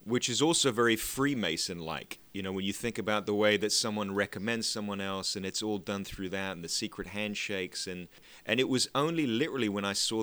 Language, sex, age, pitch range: English, male, 30-49, 90-110 Hz